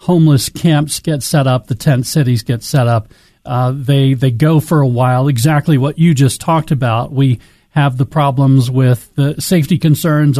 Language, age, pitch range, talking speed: English, 40-59, 130-155 Hz, 185 wpm